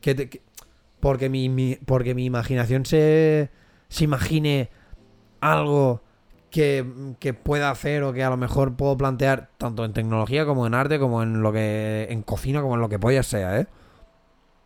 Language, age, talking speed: Spanish, 20-39, 175 wpm